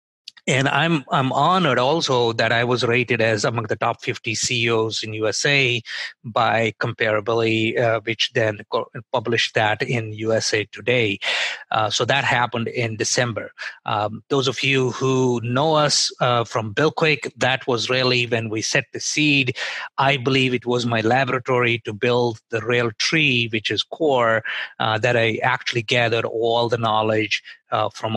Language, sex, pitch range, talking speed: English, male, 110-130 Hz, 160 wpm